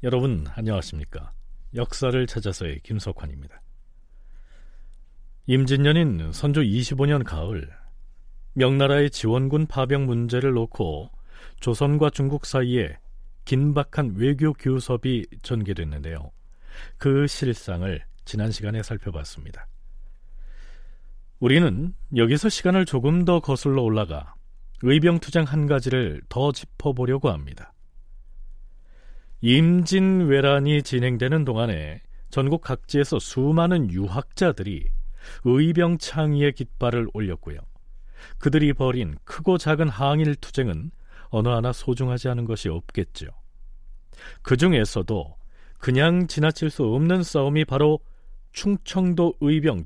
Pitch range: 100-145 Hz